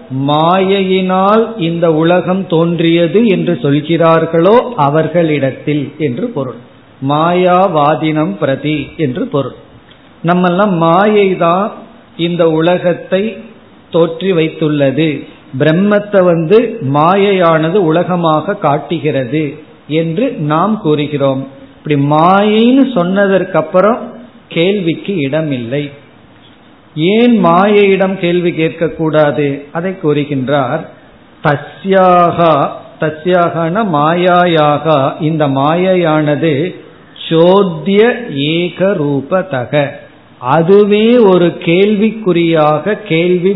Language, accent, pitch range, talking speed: Tamil, native, 150-185 Hz, 70 wpm